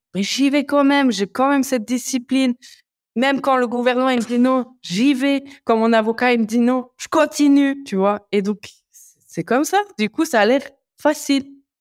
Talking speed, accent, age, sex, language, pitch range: 215 wpm, French, 20-39, female, French, 195-275 Hz